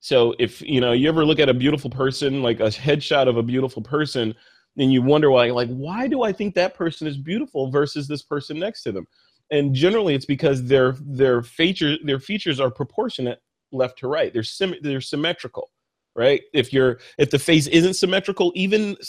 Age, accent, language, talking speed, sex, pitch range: 30-49, American, English, 200 wpm, male, 130-165 Hz